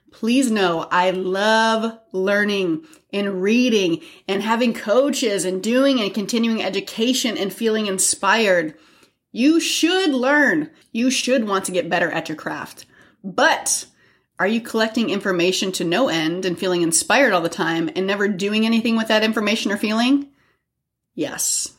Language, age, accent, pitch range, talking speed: English, 30-49, American, 185-235 Hz, 150 wpm